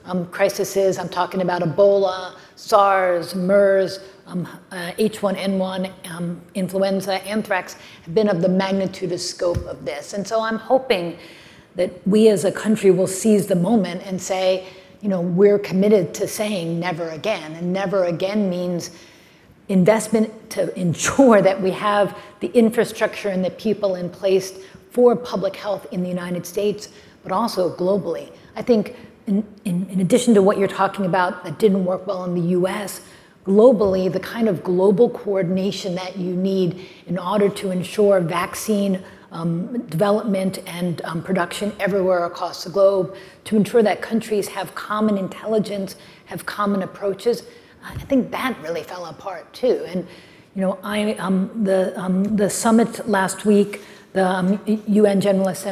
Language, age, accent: English, 40-59, American